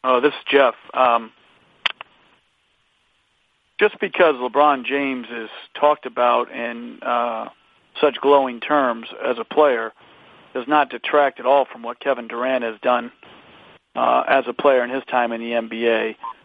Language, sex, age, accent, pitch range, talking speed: English, male, 40-59, American, 125-140 Hz, 150 wpm